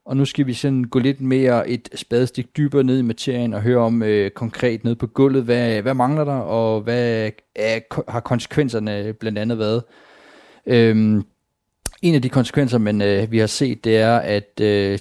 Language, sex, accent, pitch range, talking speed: Danish, male, native, 105-130 Hz, 190 wpm